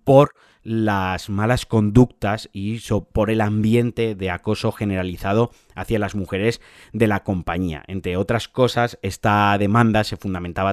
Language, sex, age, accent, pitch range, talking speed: Spanish, male, 30-49, Spanish, 95-110 Hz, 135 wpm